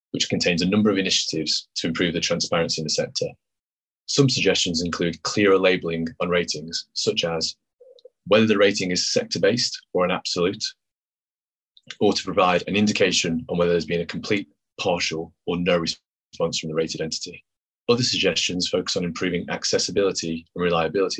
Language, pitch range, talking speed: English, 80-105 Hz, 160 wpm